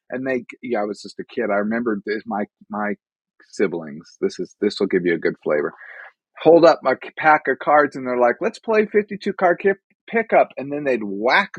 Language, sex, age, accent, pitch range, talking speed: English, male, 40-59, American, 115-175 Hz, 225 wpm